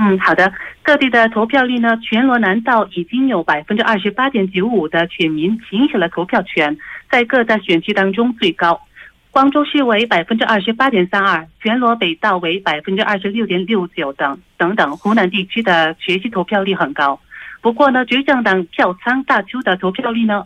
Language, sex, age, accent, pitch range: Korean, female, 30-49, Chinese, 185-230 Hz